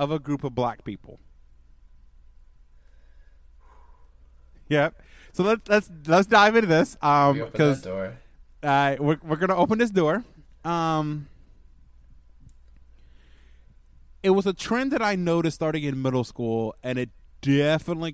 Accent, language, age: American, English, 20-39